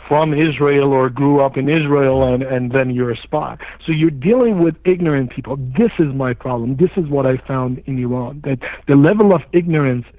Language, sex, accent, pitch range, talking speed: English, male, American, 135-170 Hz, 205 wpm